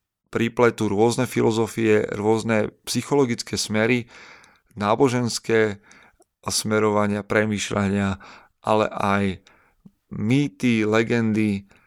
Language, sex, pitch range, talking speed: Slovak, male, 105-120 Hz, 65 wpm